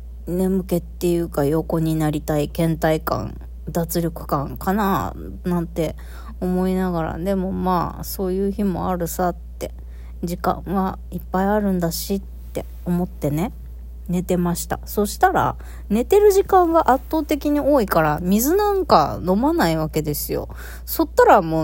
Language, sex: Japanese, female